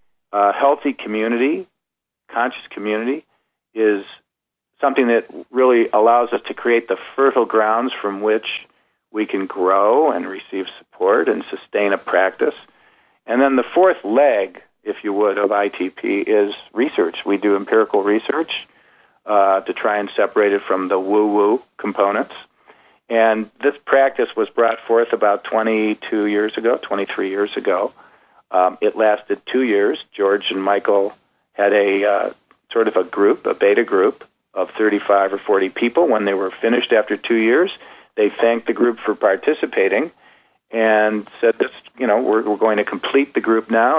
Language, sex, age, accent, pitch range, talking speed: English, male, 50-69, American, 100-140 Hz, 155 wpm